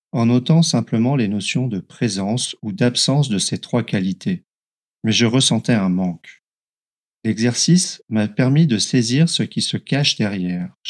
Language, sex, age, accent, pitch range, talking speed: French, male, 40-59, French, 110-140 Hz, 155 wpm